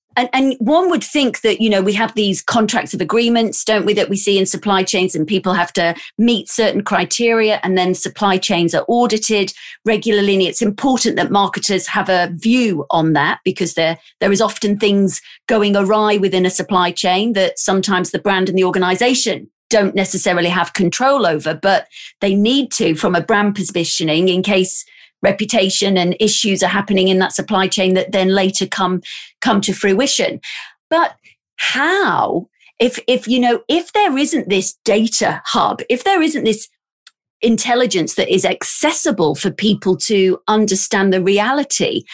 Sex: female